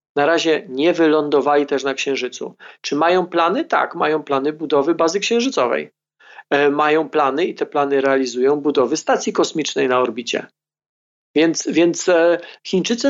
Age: 40-59